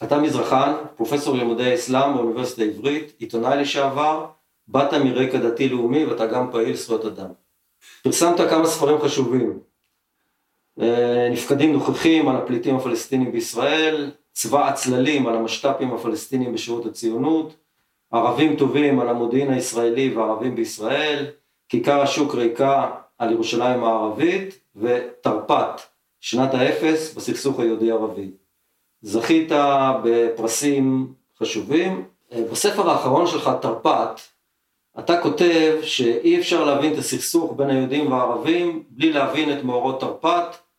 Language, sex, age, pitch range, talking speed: Hebrew, male, 40-59, 115-150 Hz, 110 wpm